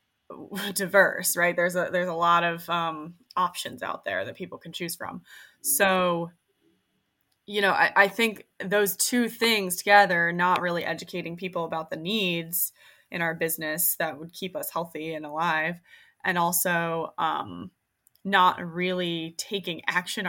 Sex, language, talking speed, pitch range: female, English, 150 wpm, 170-200 Hz